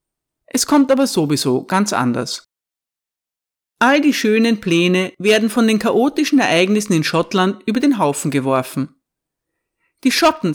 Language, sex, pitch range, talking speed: German, female, 160-255 Hz, 130 wpm